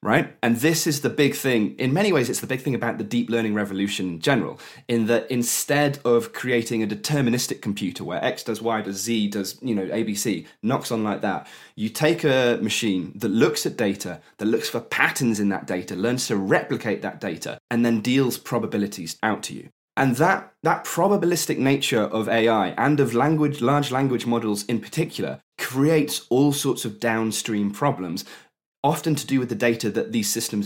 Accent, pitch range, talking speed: British, 115-155 Hz, 195 wpm